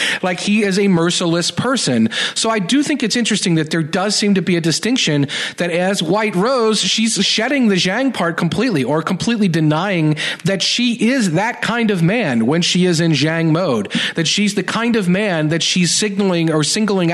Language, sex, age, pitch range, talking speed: English, male, 40-59, 150-195 Hz, 200 wpm